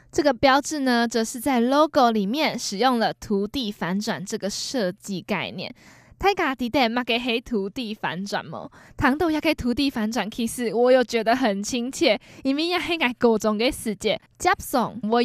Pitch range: 210-270 Hz